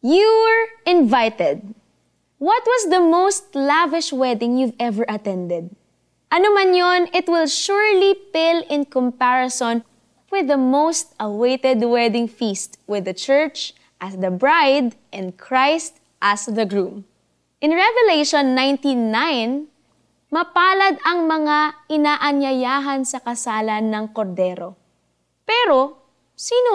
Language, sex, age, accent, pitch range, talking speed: Filipino, female, 20-39, native, 230-320 Hz, 110 wpm